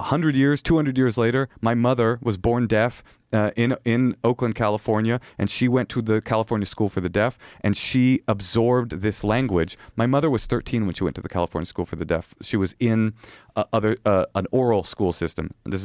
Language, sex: English, male